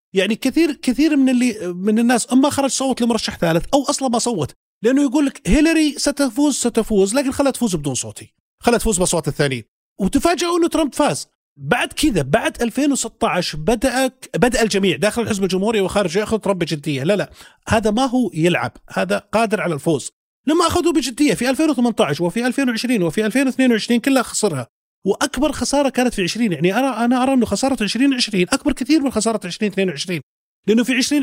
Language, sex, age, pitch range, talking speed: Arabic, male, 30-49, 180-265 Hz, 180 wpm